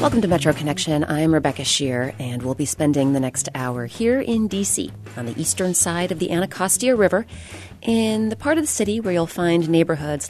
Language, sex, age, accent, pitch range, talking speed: English, female, 30-49, American, 130-195 Hz, 205 wpm